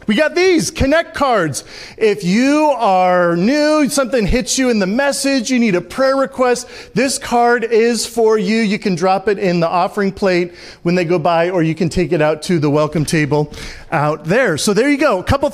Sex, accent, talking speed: male, American, 210 wpm